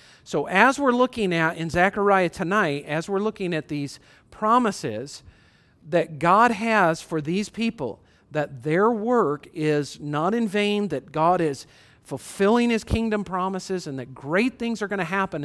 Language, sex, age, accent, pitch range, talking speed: English, male, 50-69, American, 140-195 Hz, 165 wpm